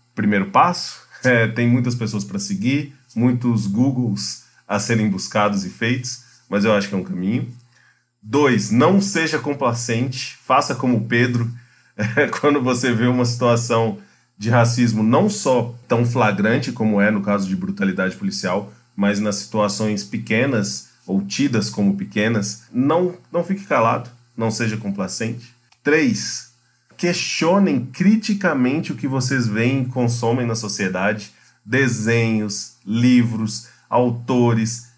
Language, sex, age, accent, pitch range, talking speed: Portuguese, male, 30-49, Brazilian, 105-125 Hz, 130 wpm